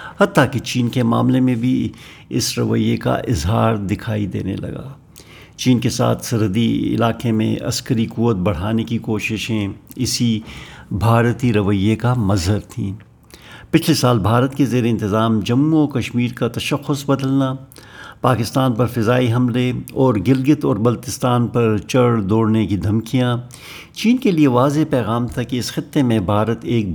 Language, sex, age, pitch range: Urdu, male, 60-79, 110-130 Hz